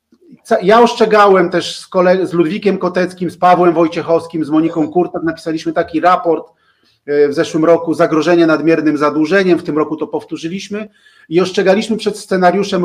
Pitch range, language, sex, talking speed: 165-205 Hz, Polish, male, 150 wpm